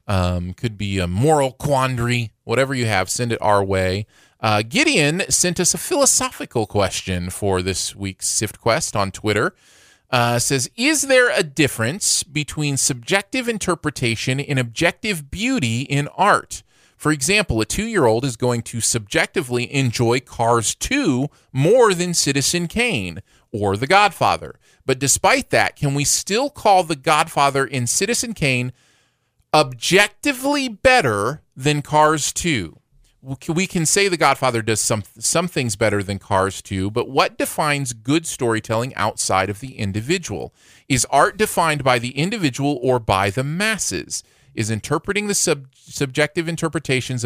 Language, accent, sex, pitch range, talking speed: English, American, male, 110-160 Hz, 145 wpm